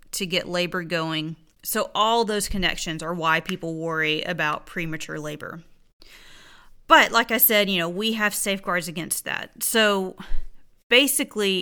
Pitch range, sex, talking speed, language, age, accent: 170-205 Hz, female, 145 wpm, English, 30-49, American